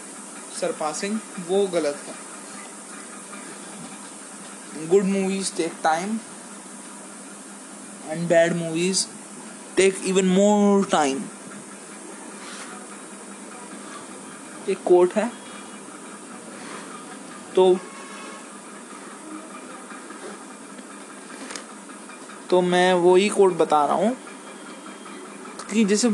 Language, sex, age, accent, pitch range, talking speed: Hindi, male, 20-39, native, 165-205 Hz, 65 wpm